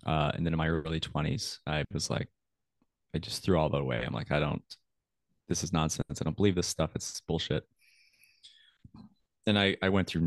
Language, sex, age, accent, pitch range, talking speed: English, male, 30-49, American, 80-95 Hz, 205 wpm